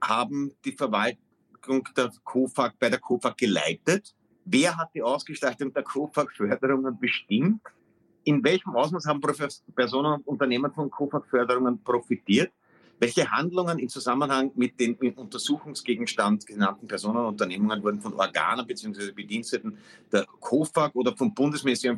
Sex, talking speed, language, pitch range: male, 130 wpm, German, 120-145 Hz